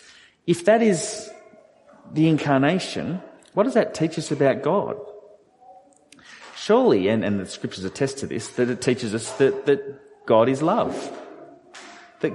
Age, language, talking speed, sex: 30-49, English, 145 wpm, male